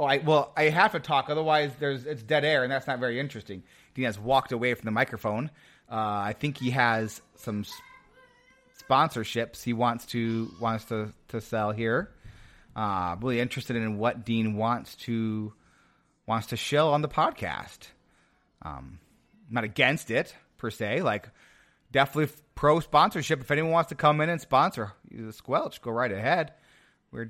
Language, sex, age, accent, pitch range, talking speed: English, male, 30-49, American, 115-155 Hz, 170 wpm